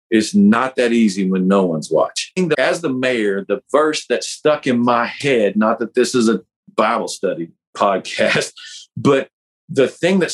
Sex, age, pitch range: male, 40-59, 110-150 Hz